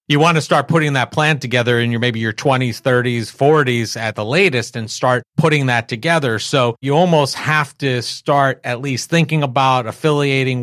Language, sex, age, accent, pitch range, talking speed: English, male, 40-59, American, 110-135 Hz, 190 wpm